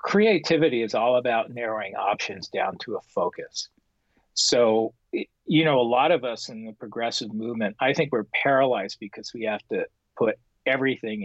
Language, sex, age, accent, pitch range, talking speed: English, male, 40-59, American, 105-130 Hz, 165 wpm